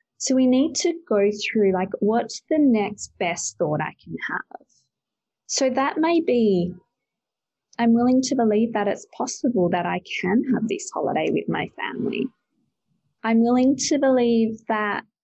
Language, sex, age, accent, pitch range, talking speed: English, female, 20-39, Australian, 185-250 Hz, 160 wpm